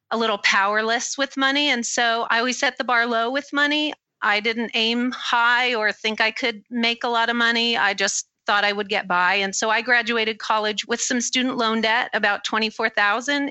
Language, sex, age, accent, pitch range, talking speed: English, female, 40-59, American, 200-235 Hz, 210 wpm